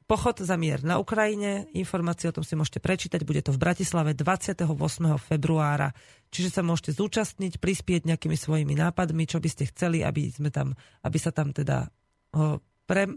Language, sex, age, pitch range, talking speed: Slovak, female, 30-49, 145-170 Hz, 170 wpm